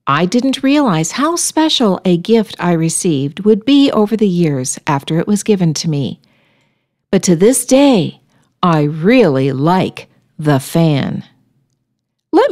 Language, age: English, 50-69